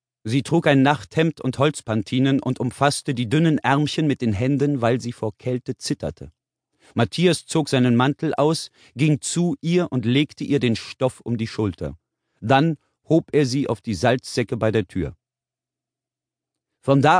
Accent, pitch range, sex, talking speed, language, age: German, 115-155 Hz, male, 165 wpm, German, 40-59